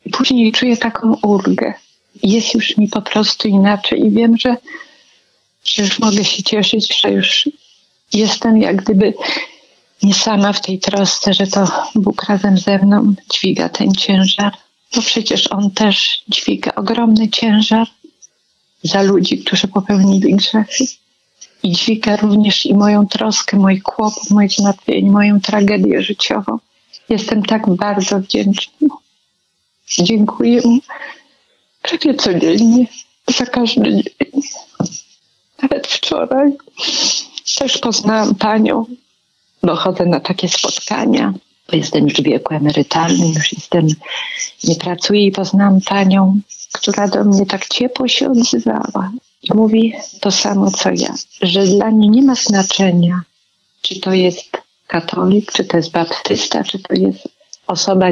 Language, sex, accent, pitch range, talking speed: Polish, female, native, 195-230 Hz, 130 wpm